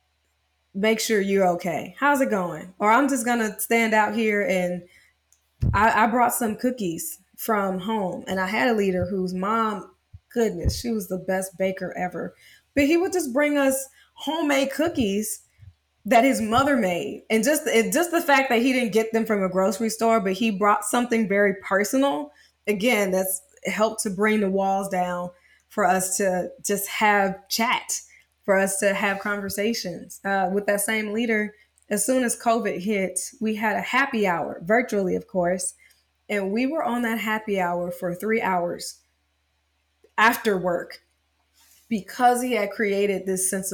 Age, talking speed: 20-39, 170 wpm